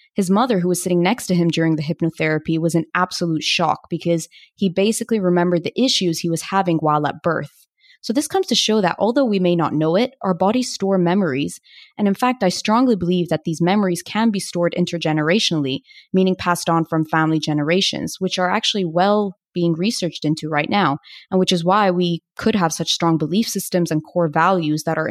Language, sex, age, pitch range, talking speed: English, female, 20-39, 165-205 Hz, 210 wpm